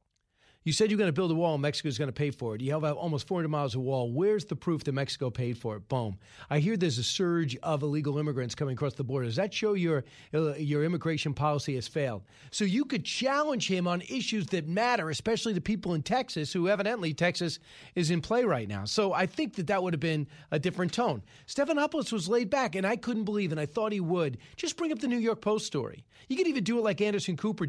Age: 40-59